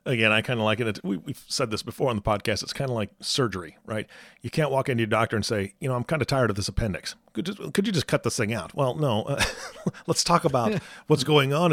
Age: 40-59